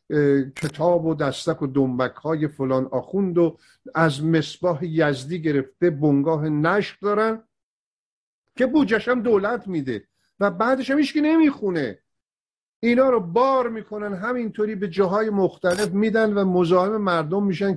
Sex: male